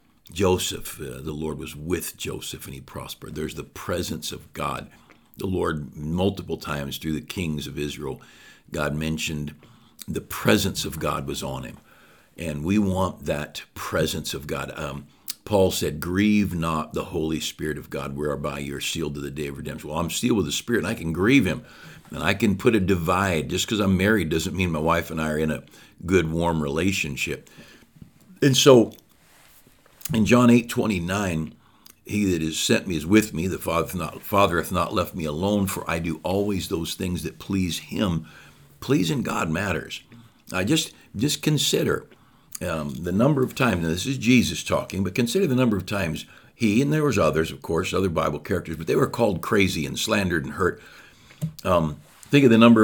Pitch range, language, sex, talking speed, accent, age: 80-100 Hz, English, male, 190 wpm, American, 60-79